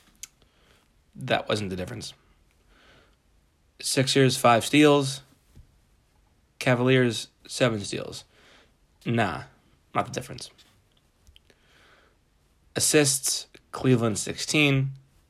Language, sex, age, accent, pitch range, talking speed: English, male, 20-39, American, 80-125 Hz, 65 wpm